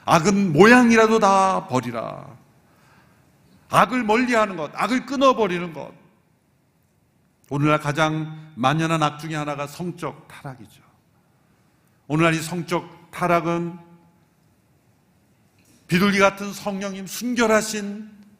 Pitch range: 135-190 Hz